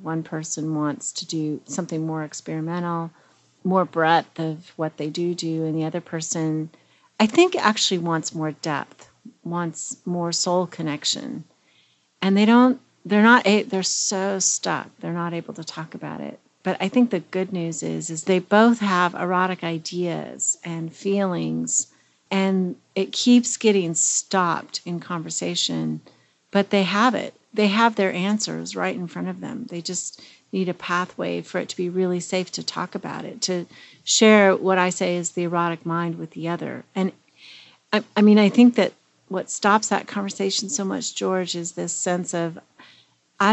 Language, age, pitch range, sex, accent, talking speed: English, 40-59, 165-200 Hz, female, American, 175 wpm